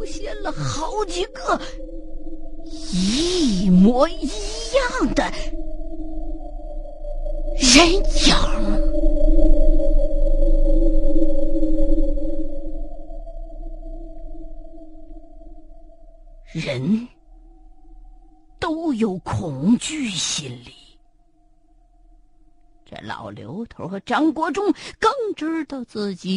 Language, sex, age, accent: Chinese, female, 50-69, American